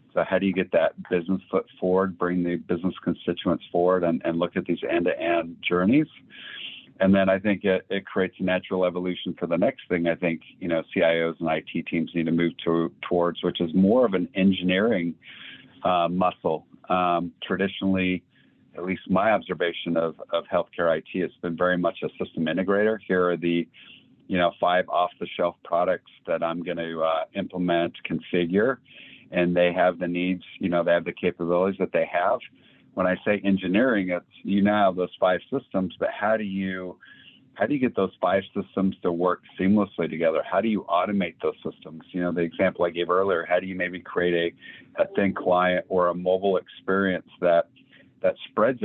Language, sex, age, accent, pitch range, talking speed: English, male, 50-69, American, 85-95 Hz, 190 wpm